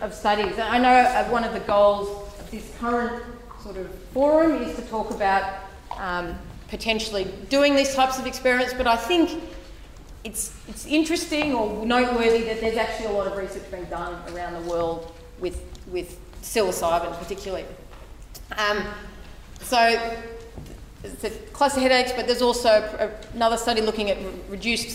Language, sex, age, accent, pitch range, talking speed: English, female, 30-49, Australian, 200-240 Hz, 150 wpm